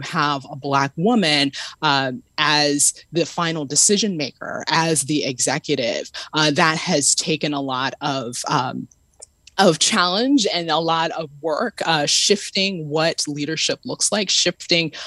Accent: American